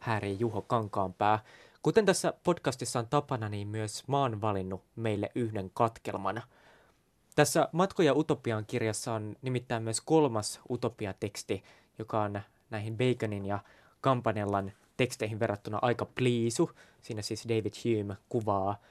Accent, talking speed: native, 125 wpm